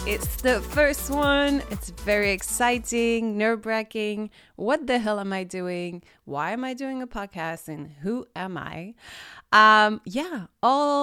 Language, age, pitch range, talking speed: English, 30-49, 175-225 Hz, 145 wpm